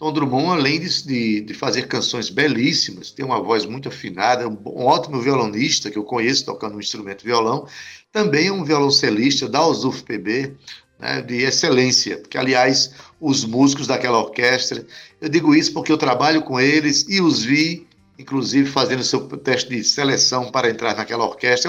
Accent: Brazilian